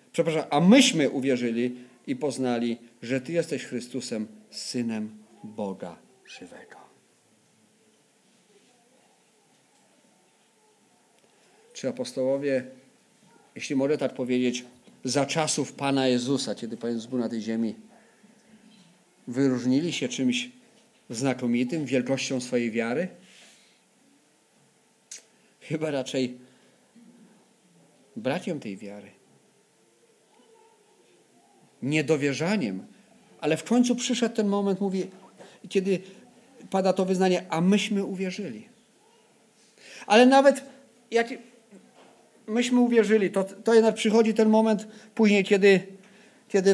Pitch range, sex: 135-225 Hz, male